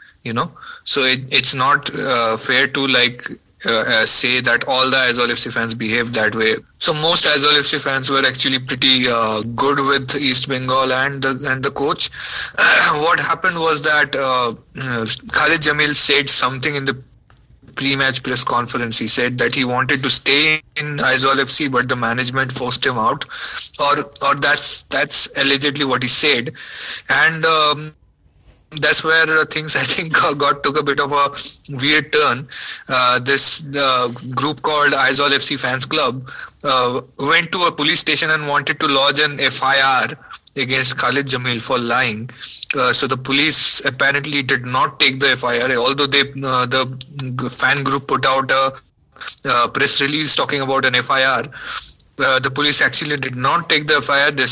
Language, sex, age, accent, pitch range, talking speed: English, male, 20-39, Indian, 125-145 Hz, 170 wpm